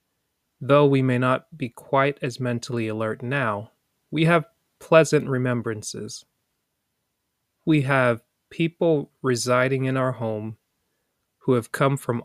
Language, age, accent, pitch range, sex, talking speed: English, 30-49, American, 120-145 Hz, male, 120 wpm